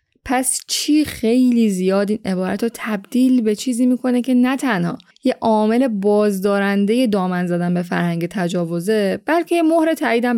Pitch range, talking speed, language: 185-245 Hz, 145 wpm, Persian